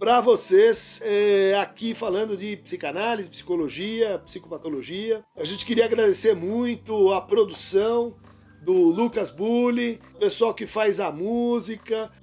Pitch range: 210-295 Hz